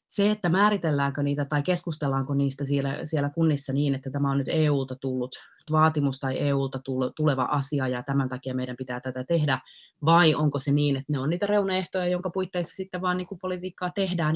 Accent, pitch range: native, 130-155 Hz